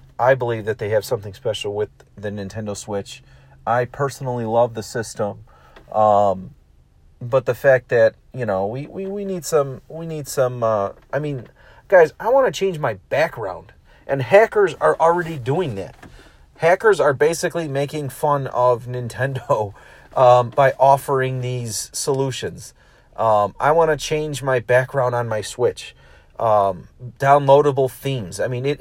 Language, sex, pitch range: English, male, 120-155 Hz